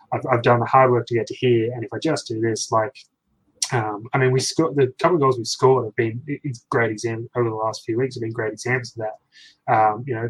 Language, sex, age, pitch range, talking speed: English, male, 20-39, 110-135 Hz, 275 wpm